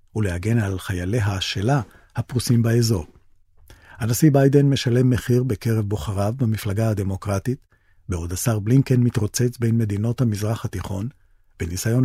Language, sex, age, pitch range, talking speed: Hebrew, male, 40-59, 95-125 Hz, 115 wpm